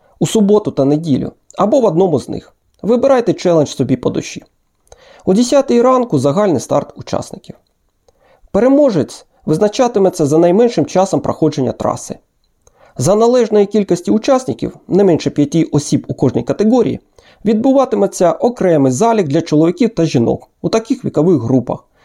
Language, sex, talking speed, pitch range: Ukrainian, male, 135 wpm, 150-215 Hz